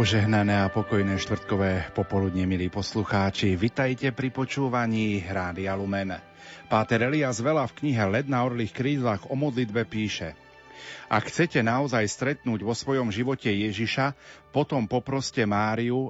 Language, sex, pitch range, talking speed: Slovak, male, 105-130 Hz, 125 wpm